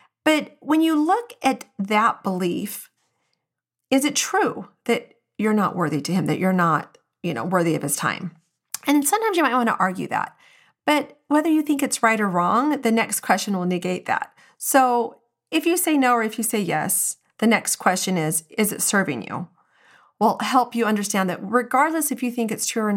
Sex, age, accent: female, 40-59, American